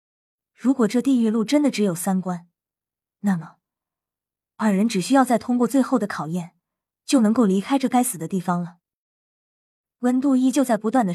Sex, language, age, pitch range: female, Chinese, 20-39, 185-250 Hz